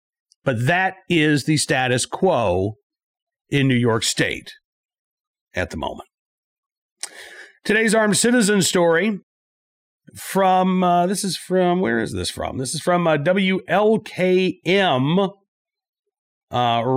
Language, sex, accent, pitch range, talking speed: English, male, American, 145-210 Hz, 115 wpm